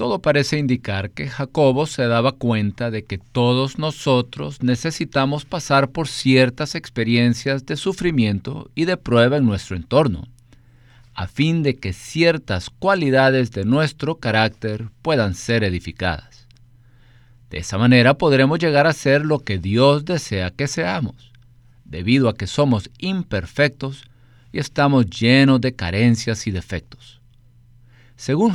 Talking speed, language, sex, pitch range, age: 130 wpm, Spanish, male, 115-140 Hz, 50-69